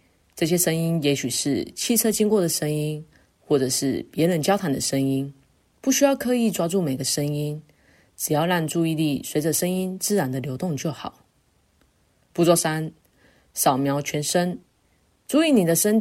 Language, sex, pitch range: Chinese, female, 145-195 Hz